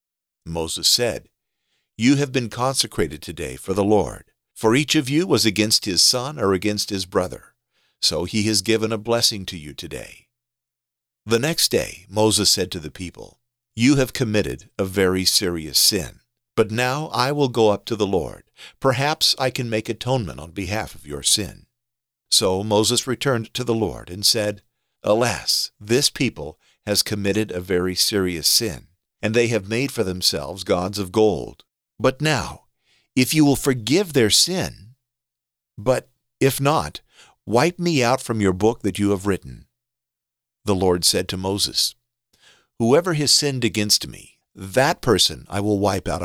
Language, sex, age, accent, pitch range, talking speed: English, male, 50-69, American, 90-125 Hz, 165 wpm